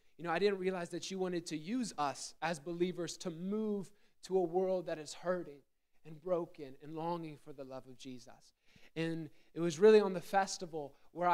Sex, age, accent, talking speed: male, 20-39, American, 200 wpm